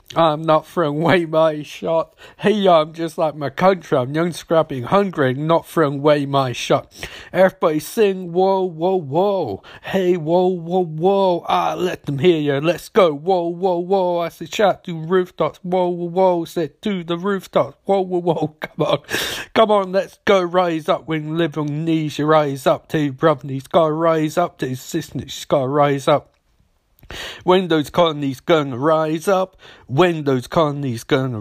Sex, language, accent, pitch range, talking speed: male, English, British, 150-175 Hz, 180 wpm